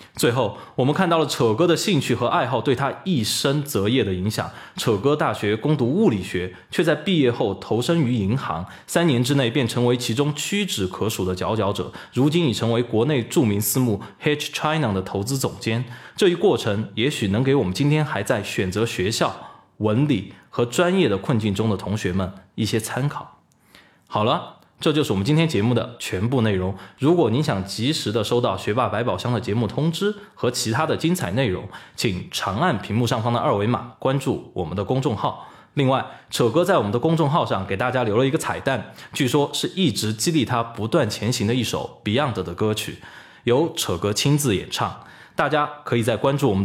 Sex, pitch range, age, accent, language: male, 105-145 Hz, 20-39, native, Chinese